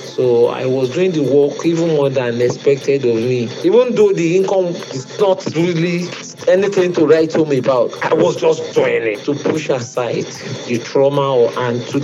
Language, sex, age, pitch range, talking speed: English, male, 50-69, 120-165 Hz, 175 wpm